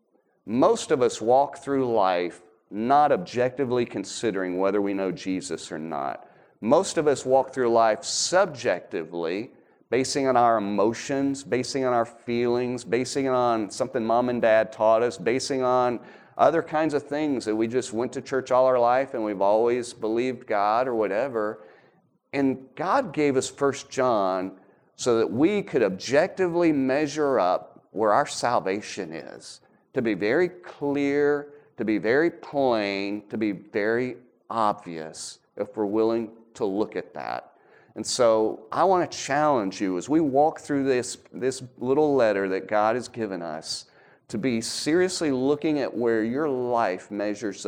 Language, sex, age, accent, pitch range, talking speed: English, male, 40-59, American, 110-140 Hz, 155 wpm